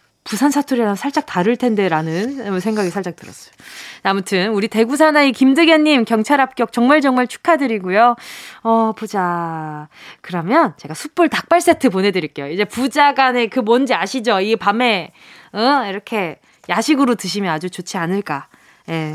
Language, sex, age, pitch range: Korean, female, 20-39, 190-265 Hz